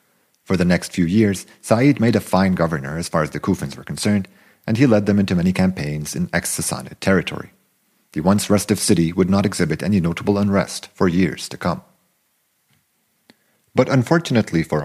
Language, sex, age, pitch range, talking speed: English, male, 40-59, 90-110 Hz, 180 wpm